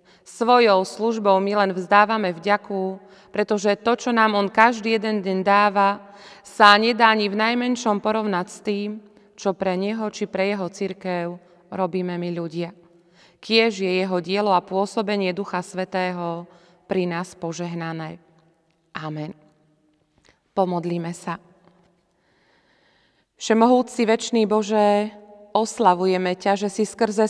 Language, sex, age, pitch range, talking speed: Slovak, female, 30-49, 185-210 Hz, 120 wpm